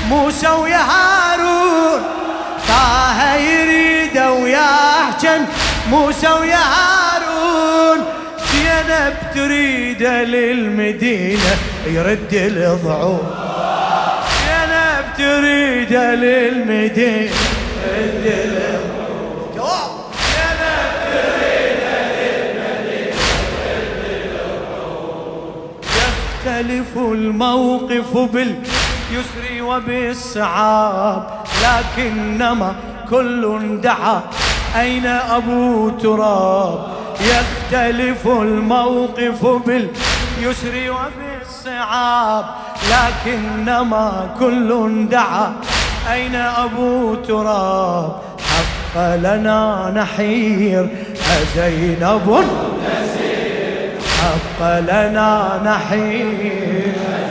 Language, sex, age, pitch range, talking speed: Arabic, male, 30-49, 210-260 Hz, 55 wpm